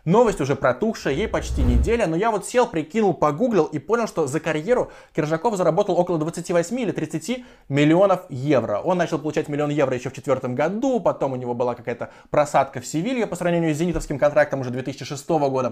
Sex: male